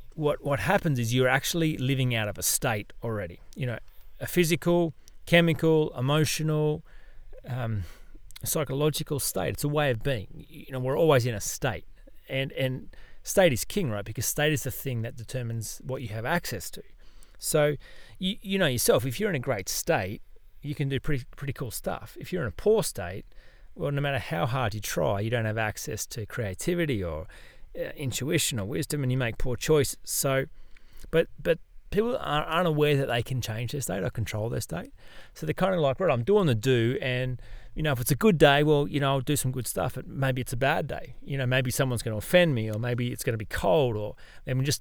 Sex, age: male, 30-49